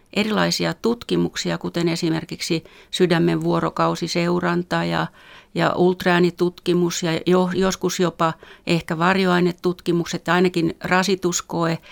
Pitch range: 160-180 Hz